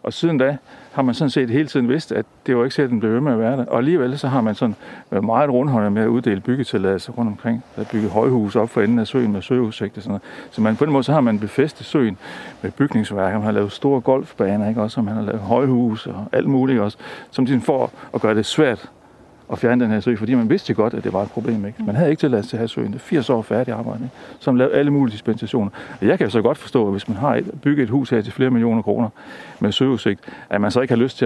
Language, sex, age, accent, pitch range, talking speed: Danish, male, 60-79, native, 110-130 Hz, 285 wpm